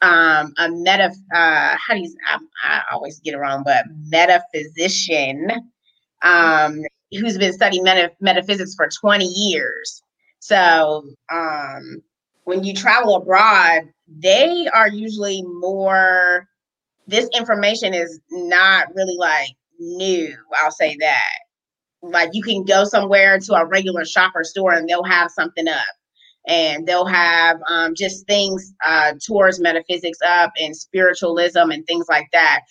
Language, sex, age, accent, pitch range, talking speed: English, female, 20-39, American, 165-200 Hz, 140 wpm